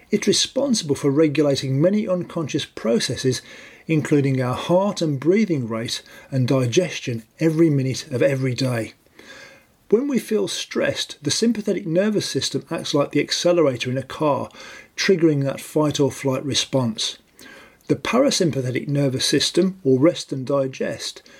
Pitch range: 130-170 Hz